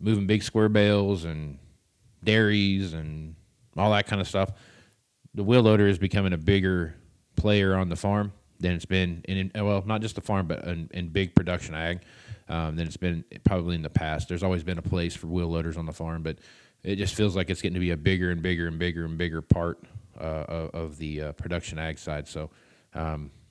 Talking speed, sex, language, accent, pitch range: 220 wpm, male, English, American, 85-105 Hz